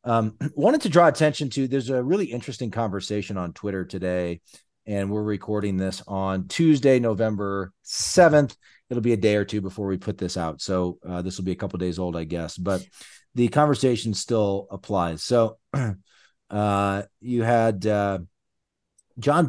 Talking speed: 175 wpm